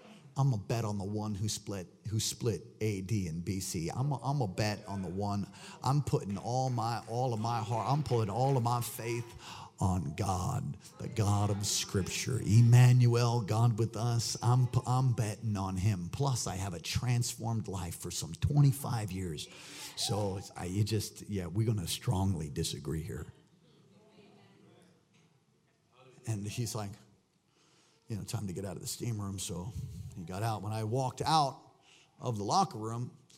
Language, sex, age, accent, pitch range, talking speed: English, male, 50-69, American, 110-150 Hz, 170 wpm